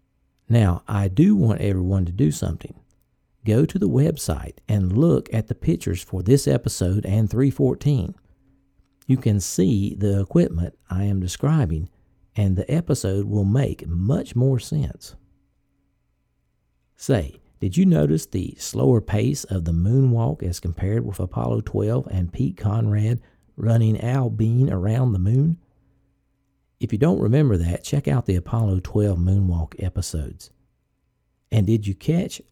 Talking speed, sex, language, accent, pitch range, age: 145 wpm, male, English, American, 95-125 Hz, 50-69